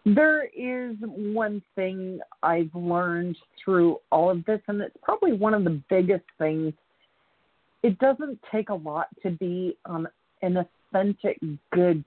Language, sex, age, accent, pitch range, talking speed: English, female, 40-59, American, 155-205 Hz, 145 wpm